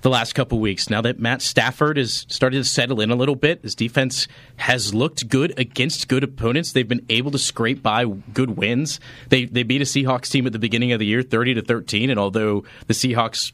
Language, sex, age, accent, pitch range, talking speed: English, male, 30-49, American, 115-130 Hz, 230 wpm